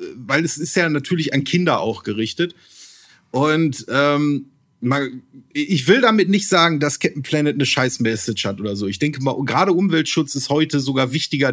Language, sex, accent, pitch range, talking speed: German, male, German, 125-155 Hz, 175 wpm